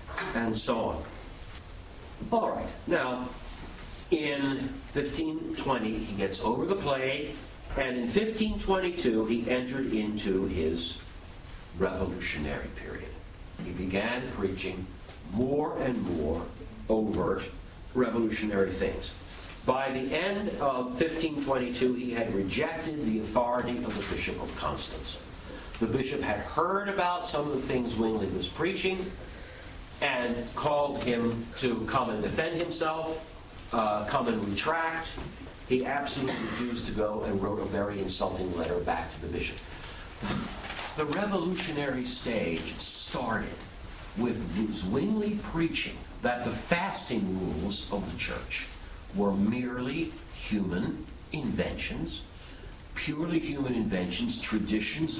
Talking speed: 115 wpm